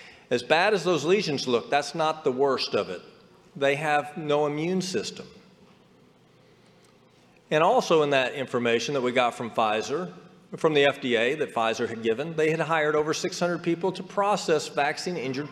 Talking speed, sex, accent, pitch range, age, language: 165 wpm, male, American, 145-190 Hz, 40-59, English